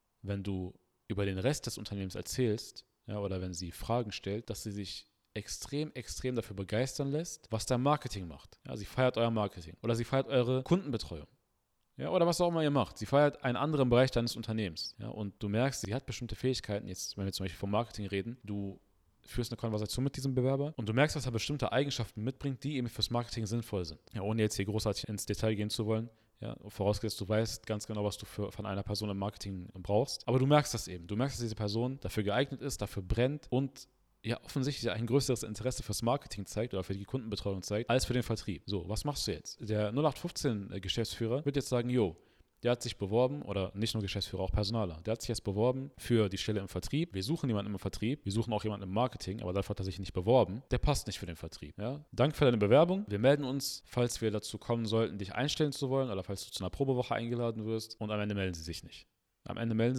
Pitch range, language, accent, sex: 100-130 Hz, German, German, male